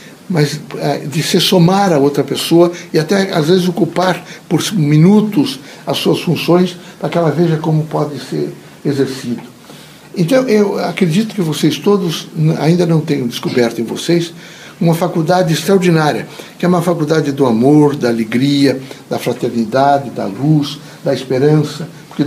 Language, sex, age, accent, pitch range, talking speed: Portuguese, male, 60-79, Brazilian, 140-185 Hz, 150 wpm